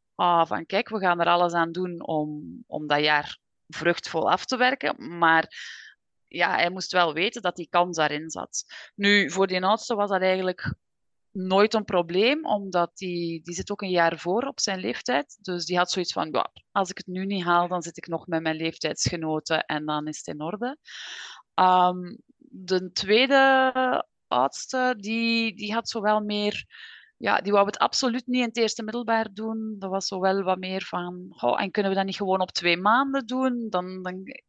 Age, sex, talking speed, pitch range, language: 20-39, female, 185 wpm, 165-210 Hz, Dutch